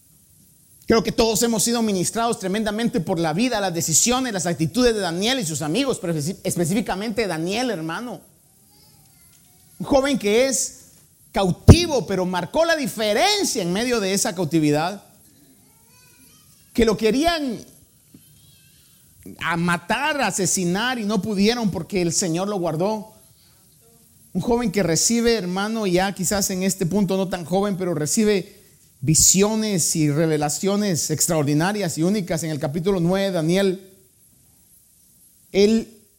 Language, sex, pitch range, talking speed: Spanish, male, 180-230 Hz, 125 wpm